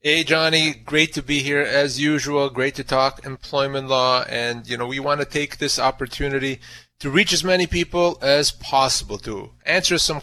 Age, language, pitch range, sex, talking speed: 30-49, English, 125-160 Hz, male, 190 wpm